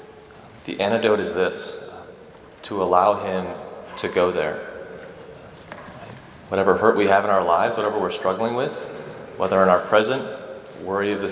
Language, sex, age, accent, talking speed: English, male, 30-49, American, 150 wpm